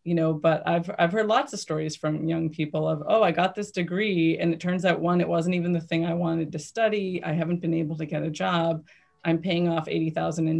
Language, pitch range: English, 160-180 Hz